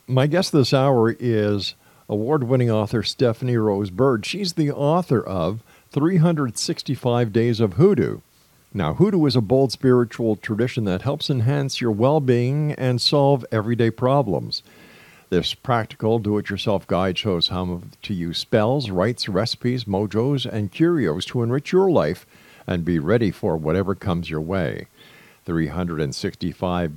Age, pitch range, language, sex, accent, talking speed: 50-69, 105-135 Hz, English, male, American, 135 wpm